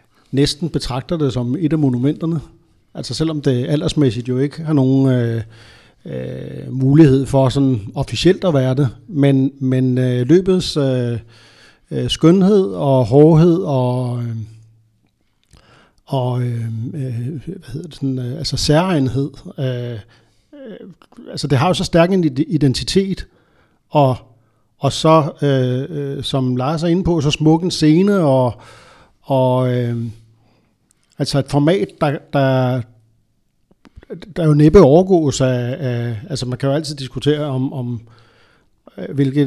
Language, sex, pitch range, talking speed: Danish, male, 125-150 Hz, 135 wpm